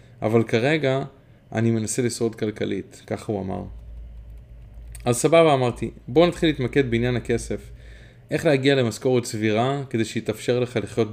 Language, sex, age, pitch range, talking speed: Hebrew, male, 20-39, 105-125 Hz, 135 wpm